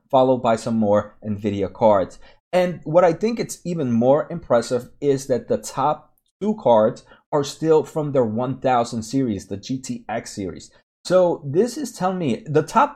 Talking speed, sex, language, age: 165 wpm, male, English, 30-49